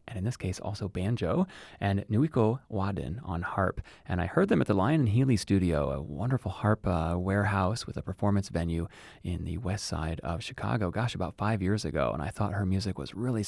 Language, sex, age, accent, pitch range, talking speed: English, male, 30-49, American, 90-110 Hz, 215 wpm